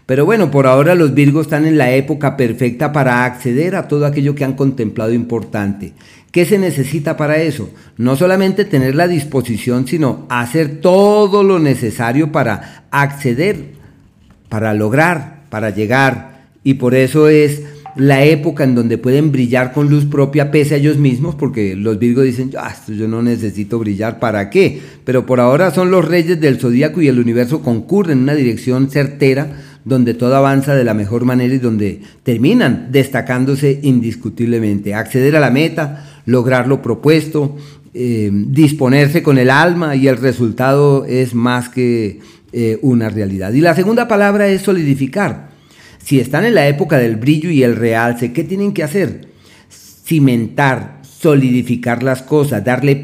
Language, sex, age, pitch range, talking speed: Spanish, male, 40-59, 120-150 Hz, 160 wpm